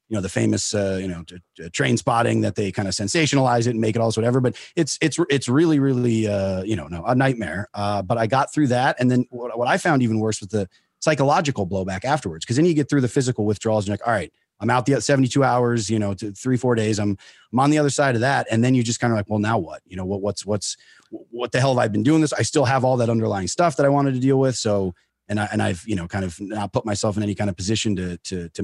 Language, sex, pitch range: English, male, 100-130 Hz